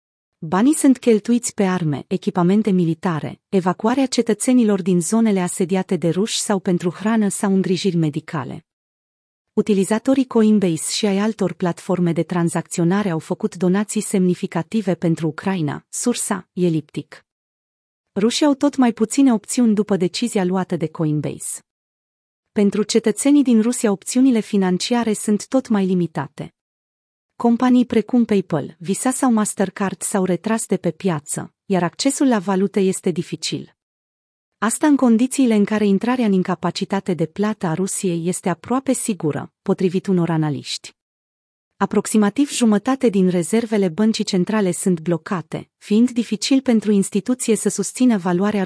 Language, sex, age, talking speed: Romanian, female, 30-49, 130 wpm